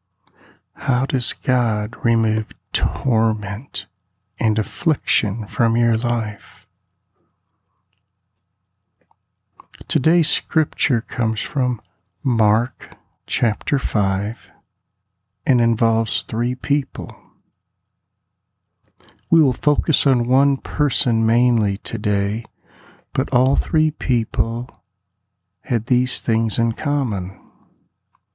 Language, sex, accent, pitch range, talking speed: English, male, American, 95-120 Hz, 80 wpm